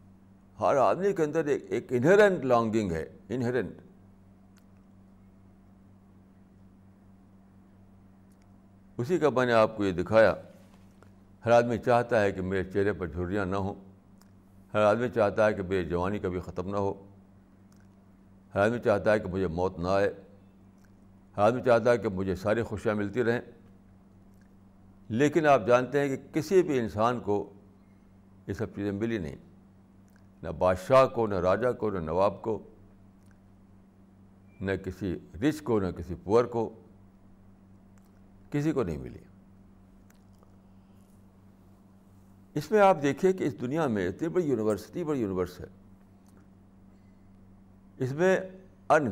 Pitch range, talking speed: 95-105 Hz, 135 wpm